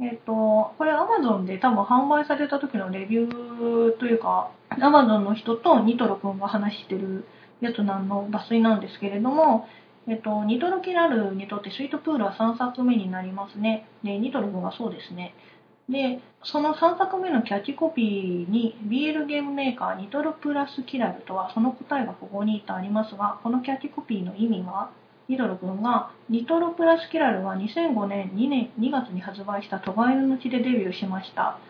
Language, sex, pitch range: Japanese, female, 205-275 Hz